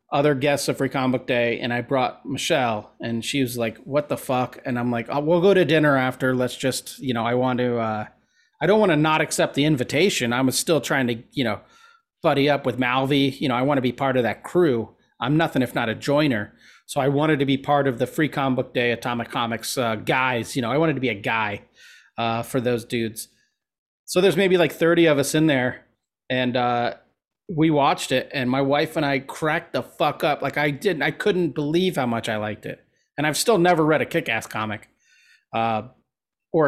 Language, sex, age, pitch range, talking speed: English, male, 30-49, 125-150 Hz, 230 wpm